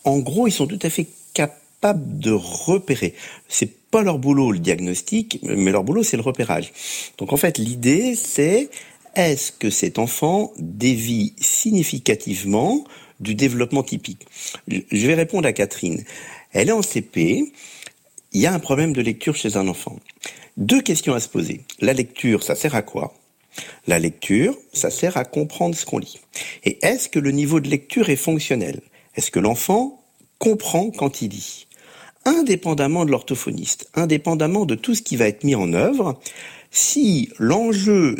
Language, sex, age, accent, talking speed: French, male, 50-69, French, 165 wpm